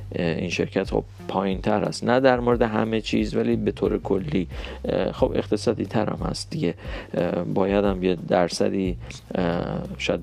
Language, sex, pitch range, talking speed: Persian, male, 95-115 Hz, 155 wpm